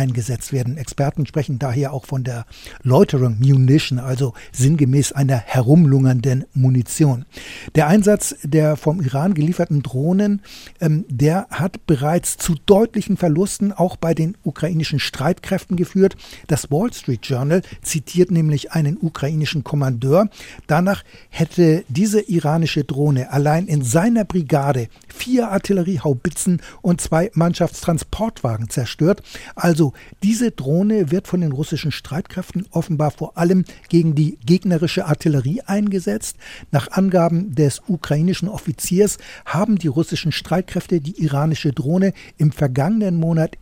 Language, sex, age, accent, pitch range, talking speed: German, male, 60-79, German, 145-185 Hz, 125 wpm